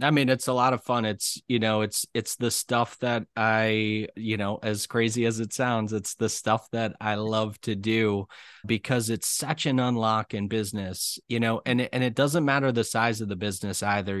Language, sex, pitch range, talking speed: English, male, 110-130 Hz, 215 wpm